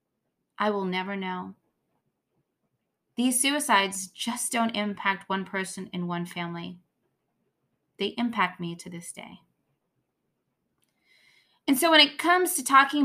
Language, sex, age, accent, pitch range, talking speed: English, female, 20-39, American, 190-255 Hz, 125 wpm